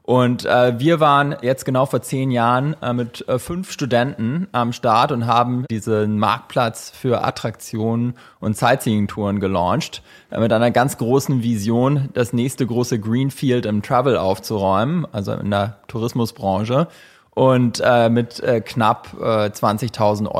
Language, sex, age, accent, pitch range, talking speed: English, male, 20-39, German, 105-125 Hz, 145 wpm